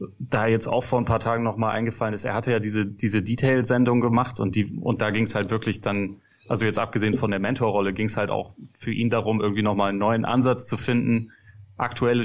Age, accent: 30-49, German